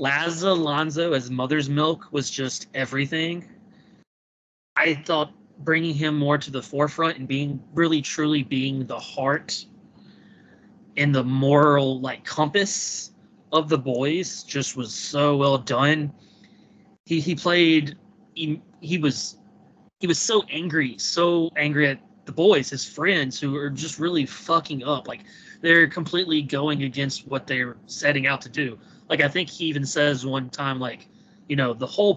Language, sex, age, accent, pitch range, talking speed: English, male, 20-39, American, 135-170 Hz, 155 wpm